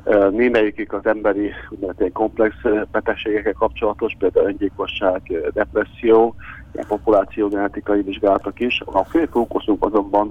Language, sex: Hungarian, male